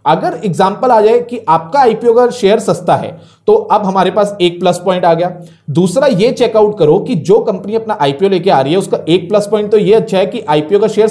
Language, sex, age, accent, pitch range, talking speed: Hindi, male, 30-49, native, 175-235 Hz, 225 wpm